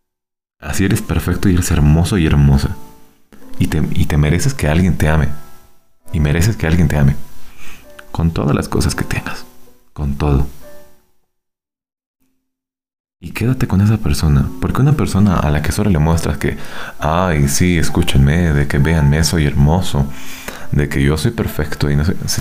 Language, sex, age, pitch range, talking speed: Spanish, male, 30-49, 75-95 Hz, 165 wpm